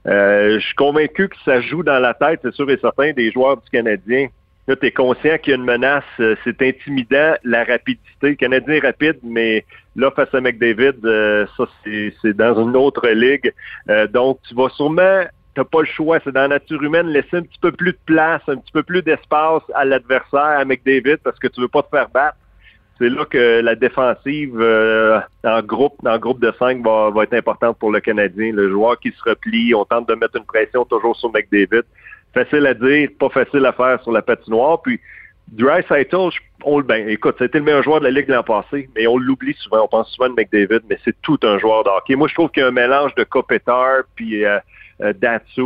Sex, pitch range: male, 115-150 Hz